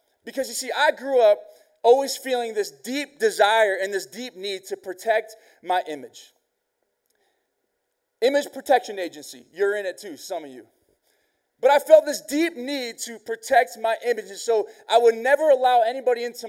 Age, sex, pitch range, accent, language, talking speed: 20-39, male, 220-265 Hz, American, English, 170 wpm